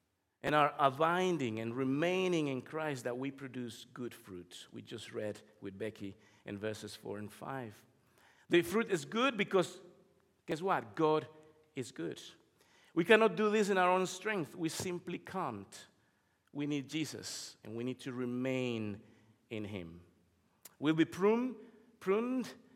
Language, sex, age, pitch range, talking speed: English, male, 50-69, 125-185 Hz, 150 wpm